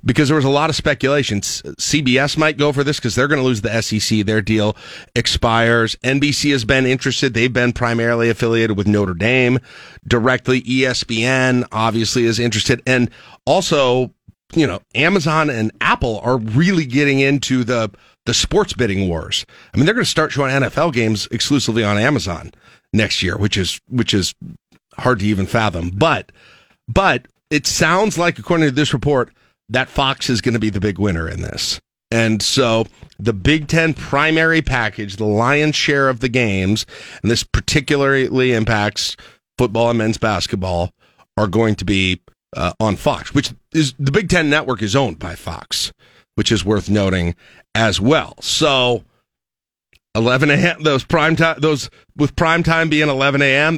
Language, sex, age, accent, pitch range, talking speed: English, male, 40-59, American, 110-140 Hz, 170 wpm